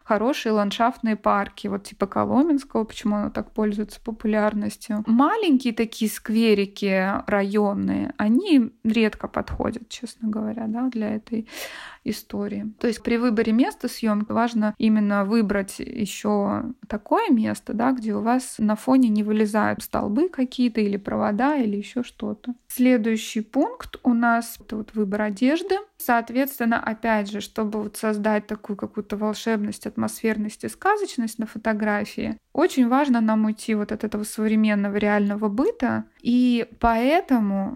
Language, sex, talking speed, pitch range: Russian, female, 135 wpm, 210-245 Hz